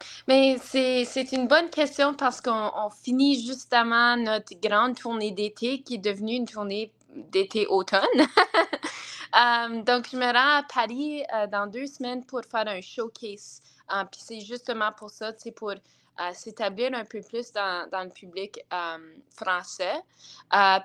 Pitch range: 210-255 Hz